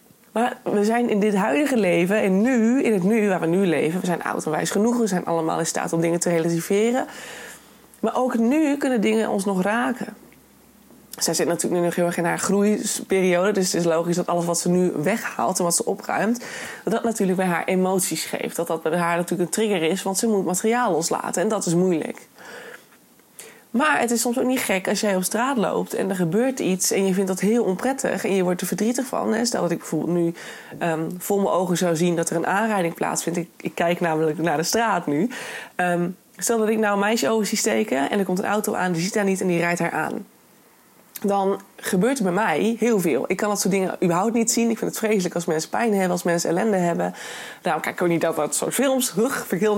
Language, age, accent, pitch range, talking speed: Dutch, 20-39, Dutch, 175-225 Hz, 245 wpm